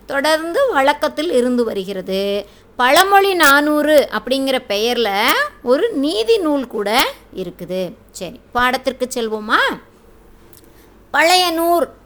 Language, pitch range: Tamil, 225-310 Hz